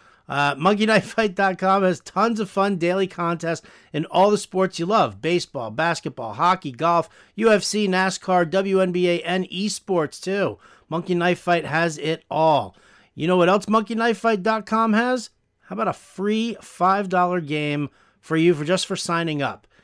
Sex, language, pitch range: male, English, 150-195 Hz